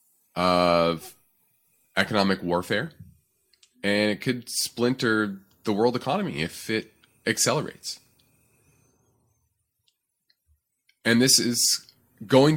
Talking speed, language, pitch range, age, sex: 80 wpm, English, 100-130 Hz, 20-39, male